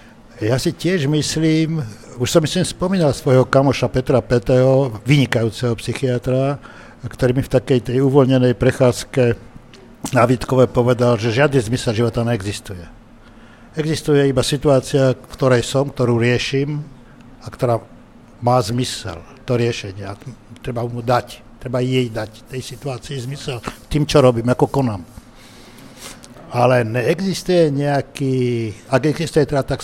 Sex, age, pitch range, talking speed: male, 60-79, 120-135 Hz, 135 wpm